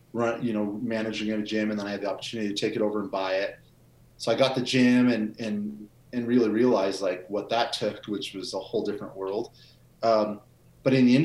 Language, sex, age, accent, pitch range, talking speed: English, male, 30-49, American, 105-125 Hz, 235 wpm